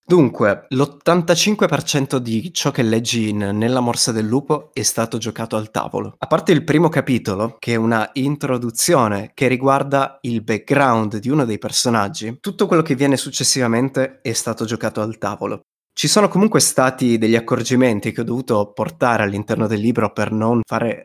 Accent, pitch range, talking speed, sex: native, 110-135 Hz, 165 wpm, male